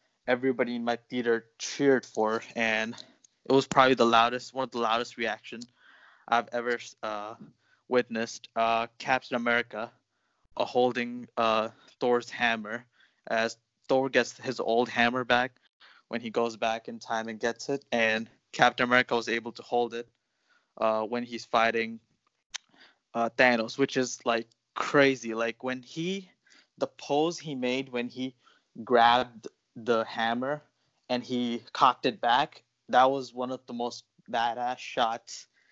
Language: English